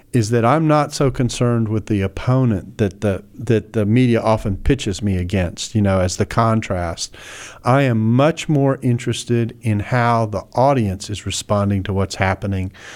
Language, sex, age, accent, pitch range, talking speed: English, male, 50-69, American, 105-125 Hz, 170 wpm